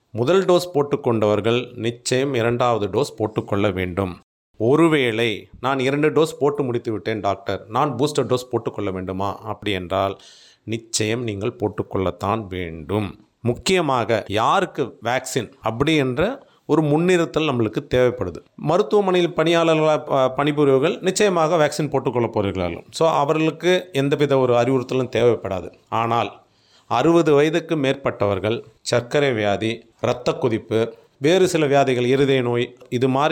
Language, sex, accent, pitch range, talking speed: Tamil, male, native, 110-145 Hz, 110 wpm